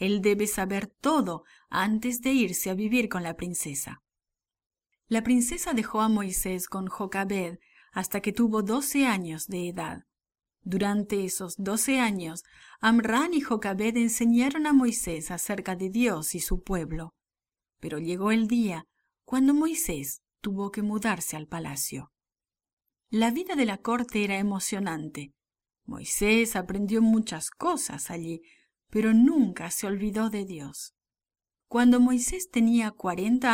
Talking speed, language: 135 wpm, English